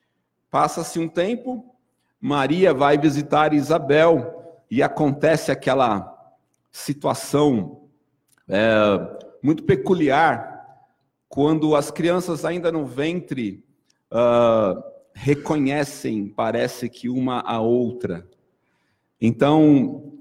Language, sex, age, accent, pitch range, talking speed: Portuguese, male, 50-69, Brazilian, 135-175 Hz, 75 wpm